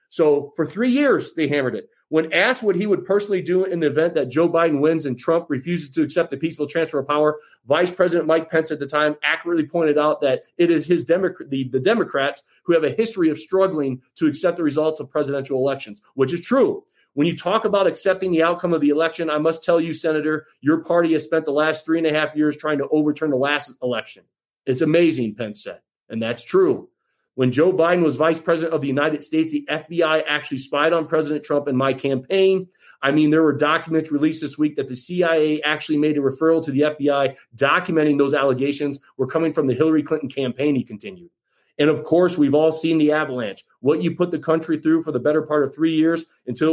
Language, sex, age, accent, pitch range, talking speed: English, male, 40-59, American, 145-165 Hz, 225 wpm